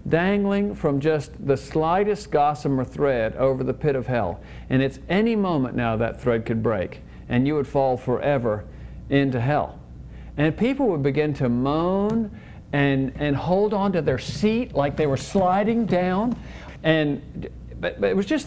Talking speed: 170 wpm